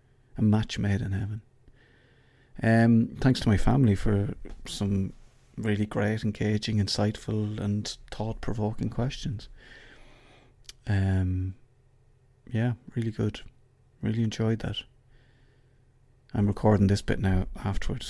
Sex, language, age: male, English, 30-49